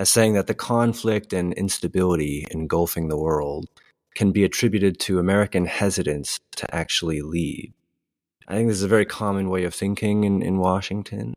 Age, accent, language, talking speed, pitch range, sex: 30-49, American, English, 170 wpm, 85-110 Hz, male